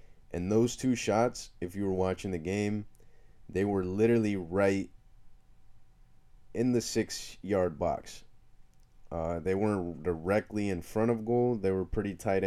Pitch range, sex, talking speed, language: 90-110 Hz, male, 150 wpm, English